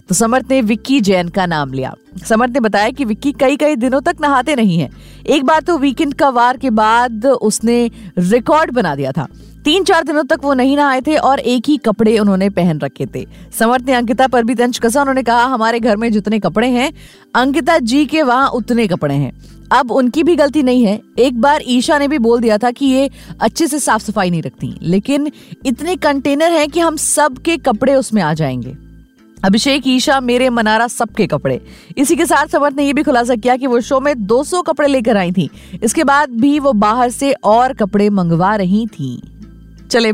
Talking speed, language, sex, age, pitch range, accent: 205 wpm, Hindi, female, 20-39, 205-285 Hz, native